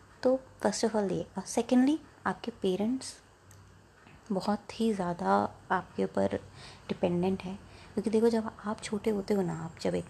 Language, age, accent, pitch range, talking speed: Hindi, 20-39, native, 175-215 Hz, 160 wpm